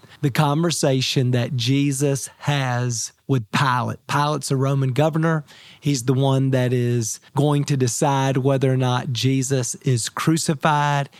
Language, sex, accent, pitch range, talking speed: English, male, American, 135-160 Hz, 135 wpm